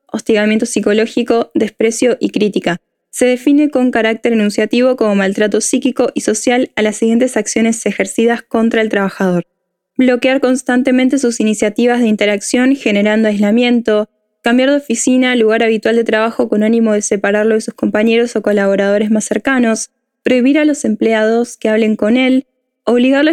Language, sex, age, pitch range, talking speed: Spanish, female, 10-29, 215-250 Hz, 150 wpm